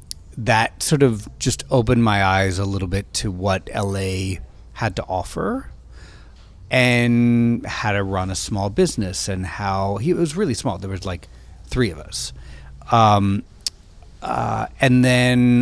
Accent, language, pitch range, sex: American, English, 95-120 Hz, male